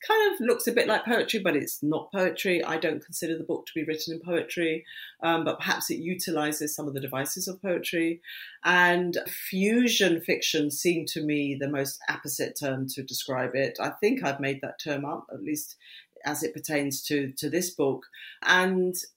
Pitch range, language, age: 150-180 Hz, English, 40-59